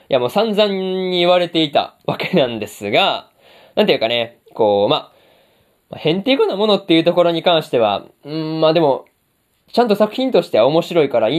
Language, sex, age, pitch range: Japanese, male, 20-39, 135-200 Hz